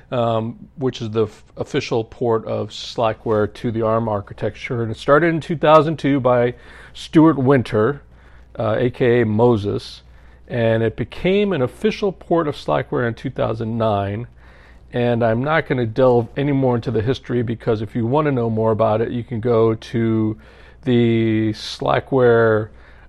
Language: English